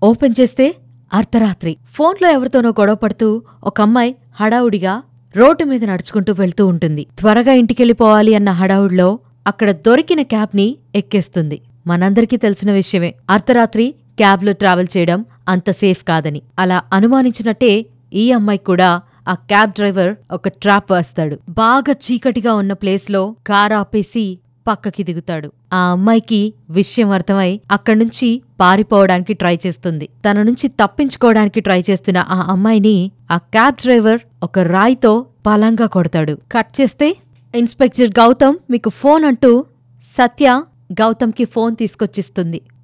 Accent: native